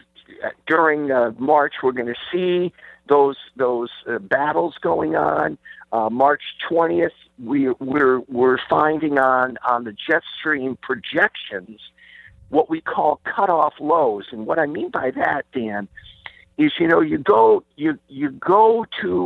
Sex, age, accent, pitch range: male, 50-69, American, 125-175 Hz